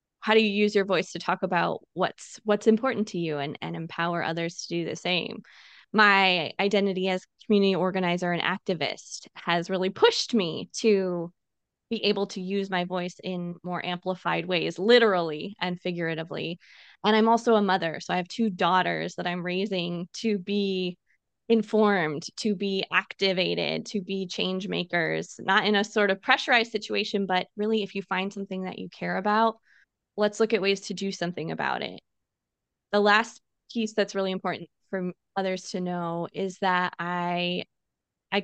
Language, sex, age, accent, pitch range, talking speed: English, female, 20-39, American, 180-210 Hz, 170 wpm